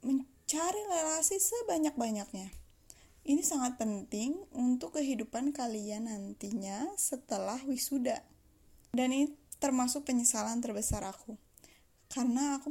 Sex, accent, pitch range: female, native, 215-295 Hz